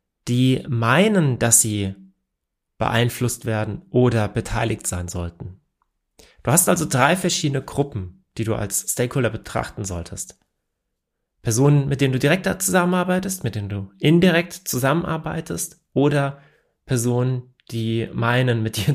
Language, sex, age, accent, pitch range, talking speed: German, male, 30-49, German, 110-165 Hz, 125 wpm